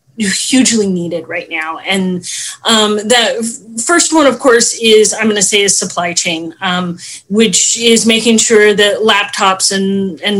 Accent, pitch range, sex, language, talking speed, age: American, 190-230 Hz, female, English, 160 wpm, 30-49